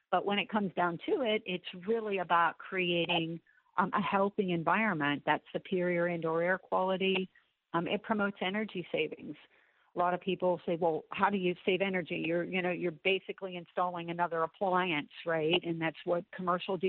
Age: 50-69